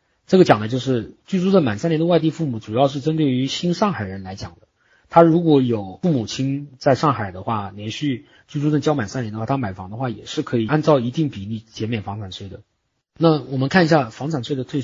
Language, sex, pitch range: Chinese, male, 115-160 Hz